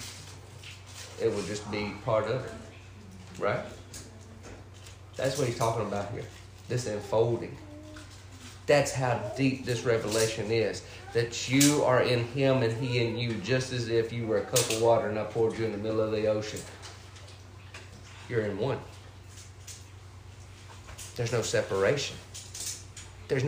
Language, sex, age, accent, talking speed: English, male, 40-59, American, 145 wpm